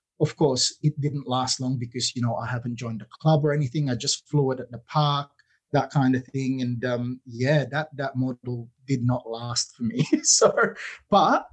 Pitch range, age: 130-165 Hz, 20-39